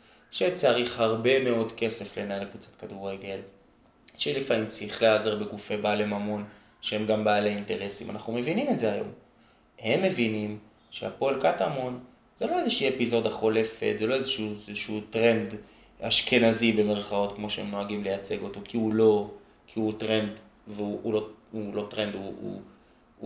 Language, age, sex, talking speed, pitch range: Hebrew, 20-39, male, 145 wpm, 110-120 Hz